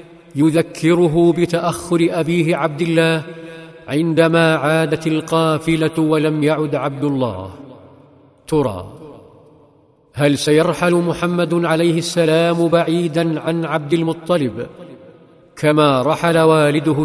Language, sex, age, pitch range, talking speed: Arabic, male, 50-69, 150-175 Hz, 90 wpm